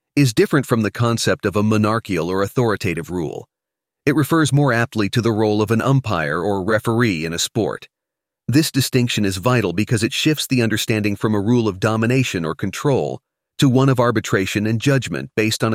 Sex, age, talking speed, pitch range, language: male, 40-59, 190 wpm, 105-130 Hz, English